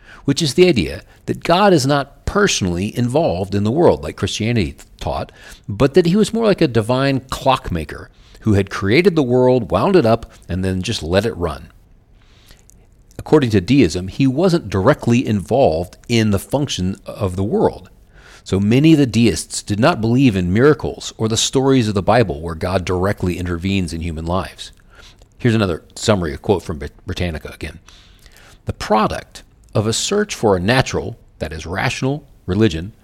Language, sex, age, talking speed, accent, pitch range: English, male, 40-59, 175 wpm, American, 95-125 Hz